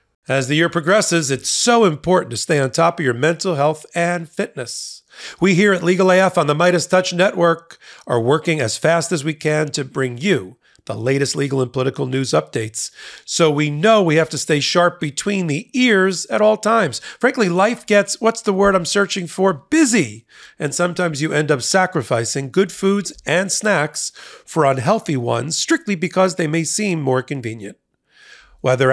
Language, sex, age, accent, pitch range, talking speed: English, male, 40-59, American, 140-195 Hz, 185 wpm